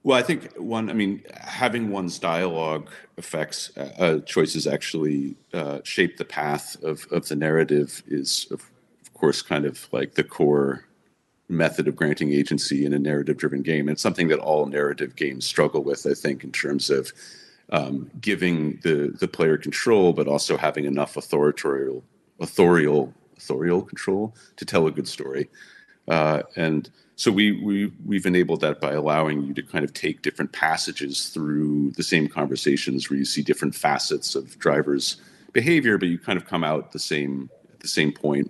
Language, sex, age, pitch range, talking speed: English, male, 50-69, 70-85 Hz, 175 wpm